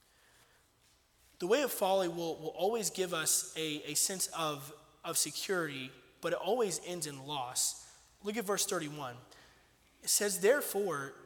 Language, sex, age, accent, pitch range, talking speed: English, male, 20-39, American, 150-185 Hz, 150 wpm